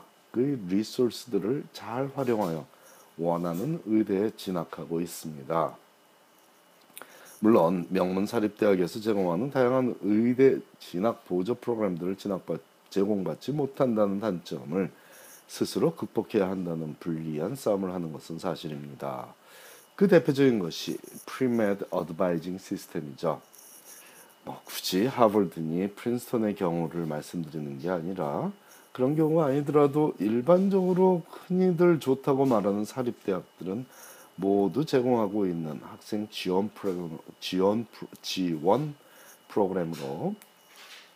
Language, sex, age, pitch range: Korean, male, 40-59, 85-125 Hz